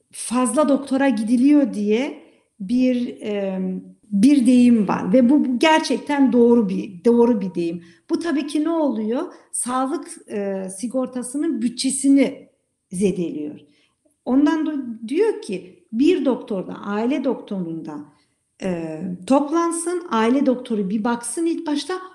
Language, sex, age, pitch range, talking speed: Turkish, female, 50-69, 205-280 Hz, 120 wpm